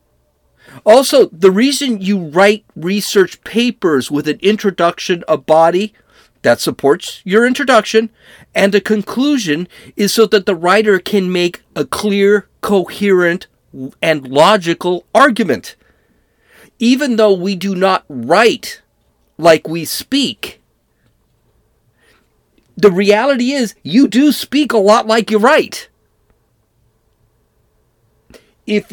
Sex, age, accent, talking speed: male, 50-69, American, 110 wpm